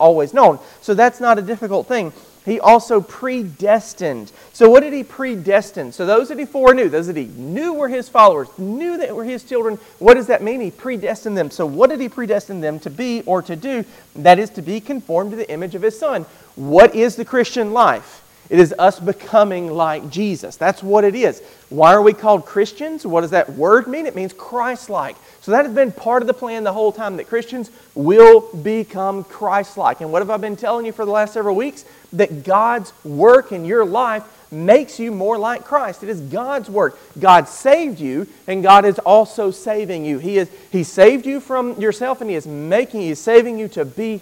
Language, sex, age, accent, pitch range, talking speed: English, male, 40-59, American, 190-240 Hz, 215 wpm